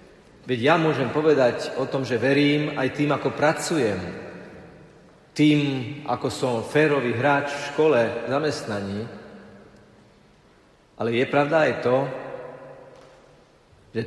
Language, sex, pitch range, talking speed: Slovak, male, 125-150 Hz, 115 wpm